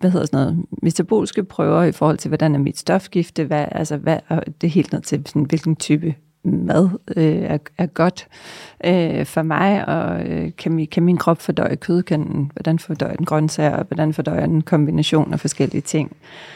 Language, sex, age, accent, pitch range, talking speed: Danish, female, 40-59, native, 160-195 Hz, 190 wpm